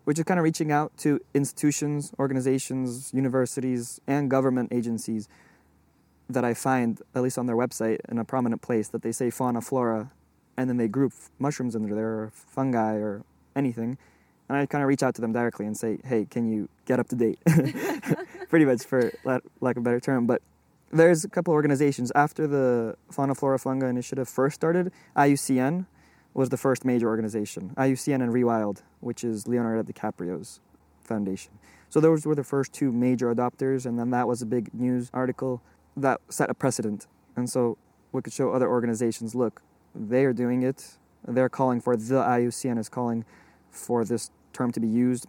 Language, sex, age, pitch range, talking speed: English, male, 20-39, 115-135 Hz, 185 wpm